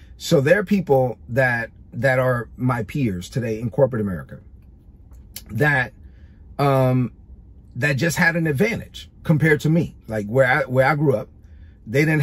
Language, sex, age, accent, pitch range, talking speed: English, male, 40-59, American, 115-155 Hz, 155 wpm